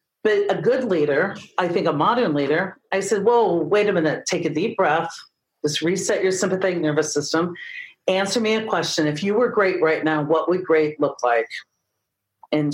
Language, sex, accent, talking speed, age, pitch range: English, female, American, 195 wpm, 40-59, 155-205 Hz